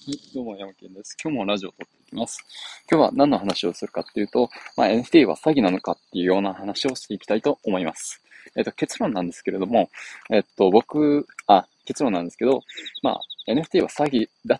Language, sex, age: Japanese, male, 20-39